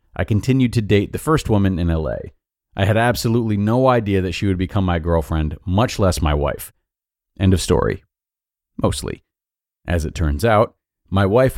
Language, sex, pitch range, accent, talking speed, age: English, male, 95-130 Hz, American, 175 wpm, 30-49